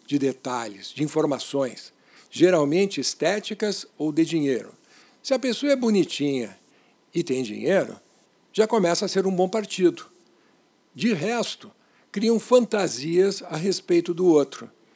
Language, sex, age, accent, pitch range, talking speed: Portuguese, male, 60-79, Brazilian, 135-205 Hz, 130 wpm